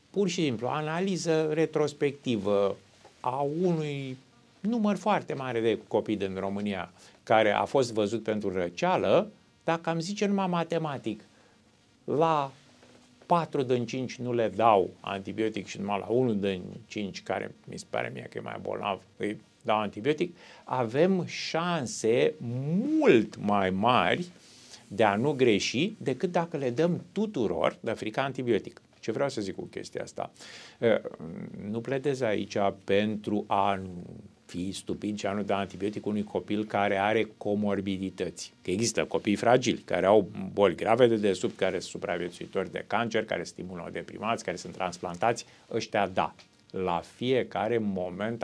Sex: male